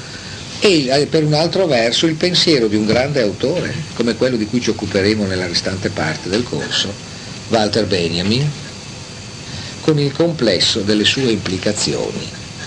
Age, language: 50-69, Italian